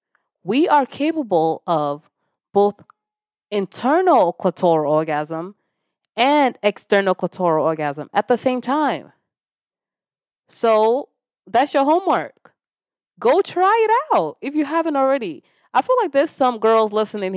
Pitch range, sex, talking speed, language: 170-260 Hz, female, 120 wpm, English